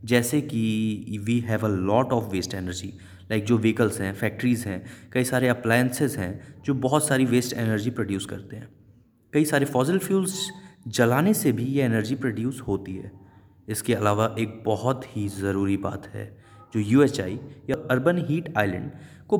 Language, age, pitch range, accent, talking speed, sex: Hindi, 20-39, 110-160 Hz, native, 165 wpm, male